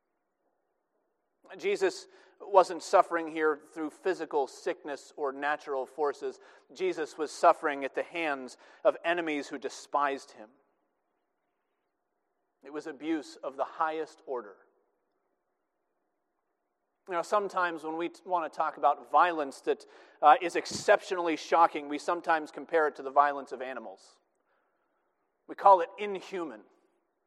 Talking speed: 125 wpm